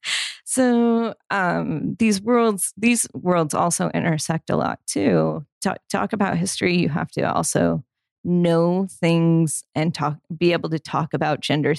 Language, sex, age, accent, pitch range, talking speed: English, female, 30-49, American, 160-220 Hz, 150 wpm